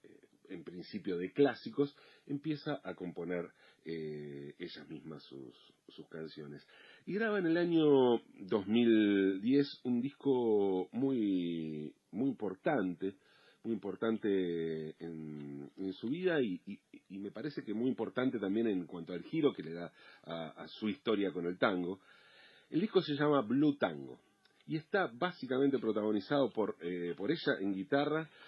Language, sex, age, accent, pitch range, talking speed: Spanish, male, 40-59, Argentinian, 90-135 Hz, 145 wpm